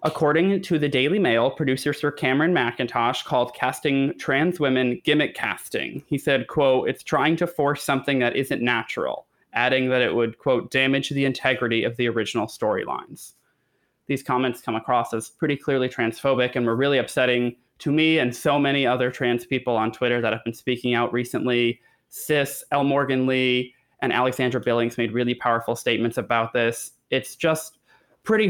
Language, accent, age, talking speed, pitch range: English, American, 20-39, 175 wpm, 120-145 Hz